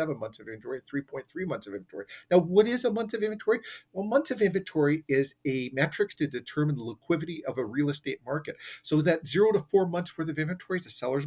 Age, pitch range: 40-59, 120-165 Hz